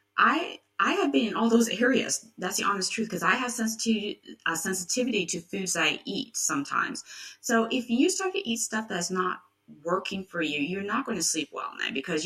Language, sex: English, female